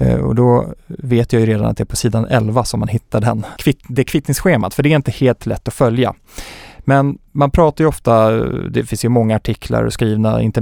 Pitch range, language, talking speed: 110-135 Hz, Swedish, 225 wpm